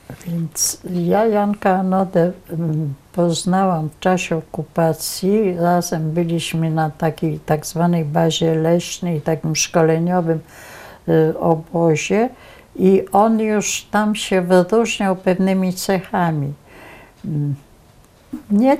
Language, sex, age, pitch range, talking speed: Polish, female, 60-79, 165-195 Hz, 90 wpm